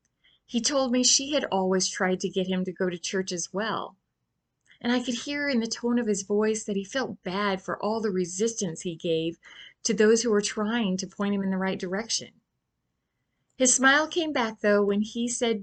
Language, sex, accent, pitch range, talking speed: English, female, American, 180-240 Hz, 215 wpm